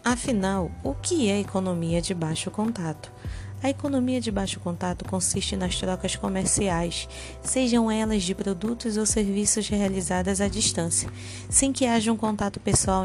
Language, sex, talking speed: Portuguese, female, 150 wpm